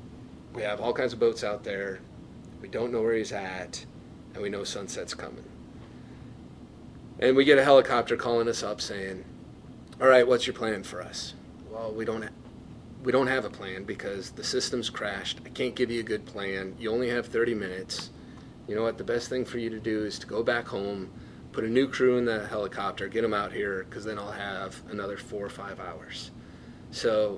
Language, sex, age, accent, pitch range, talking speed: English, male, 30-49, American, 105-130 Hz, 210 wpm